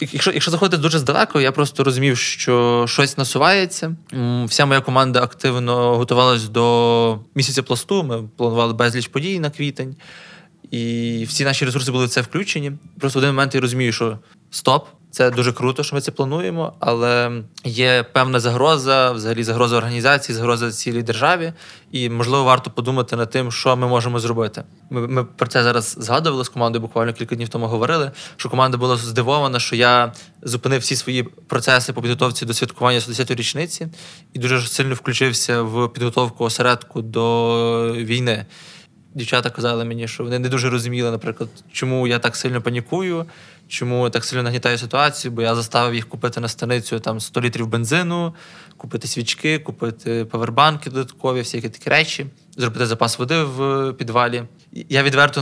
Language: Ukrainian